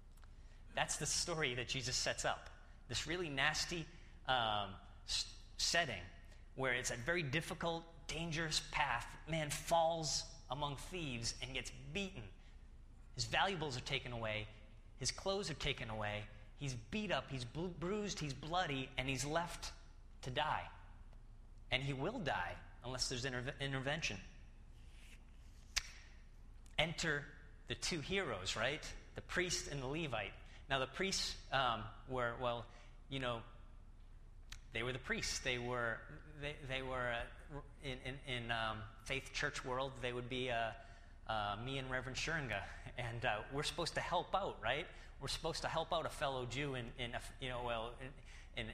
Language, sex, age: English, male, 30-49